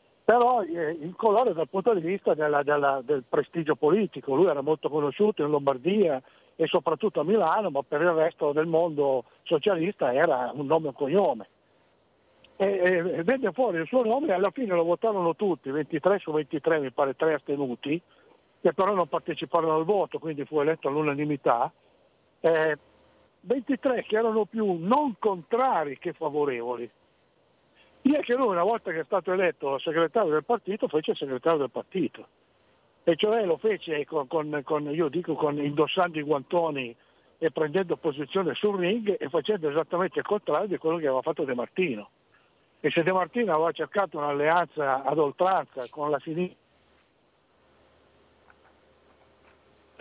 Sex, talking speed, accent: male, 155 wpm, native